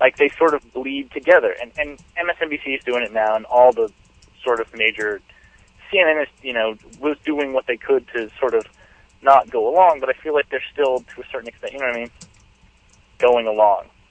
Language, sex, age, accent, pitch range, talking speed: English, male, 30-49, American, 125-170 Hz, 215 wpm